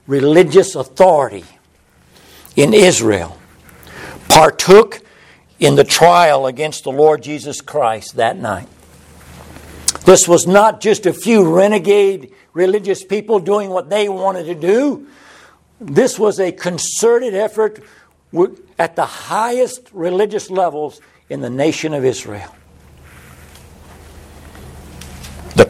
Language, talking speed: English, 105 wpm